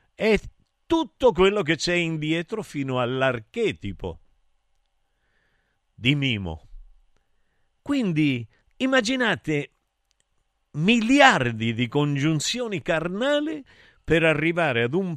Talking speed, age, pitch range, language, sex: 80 wpm, 50-69, 100-155 Hz, Italian, male